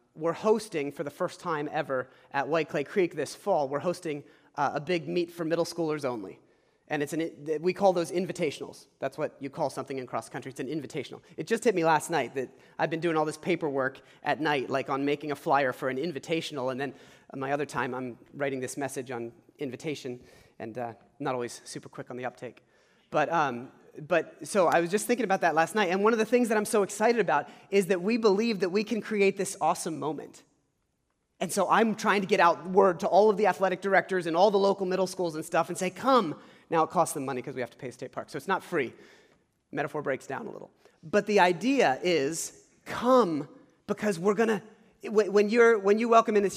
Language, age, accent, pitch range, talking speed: English, 30-49, American, 140-200 Hz, 230 wpm